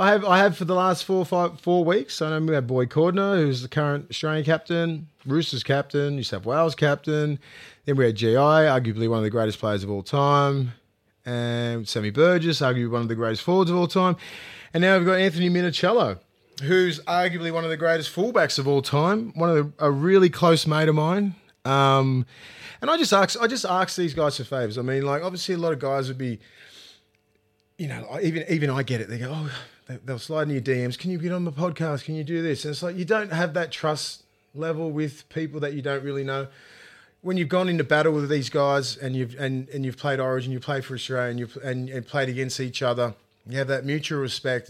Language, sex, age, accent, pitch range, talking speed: English, male, 20-39, Australian, 130-165 Hz, 230 wpm